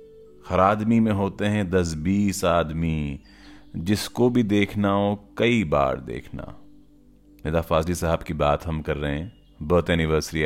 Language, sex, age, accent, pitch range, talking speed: Hindi, male, 40-59, native, 75-100 Hz, 150 wpm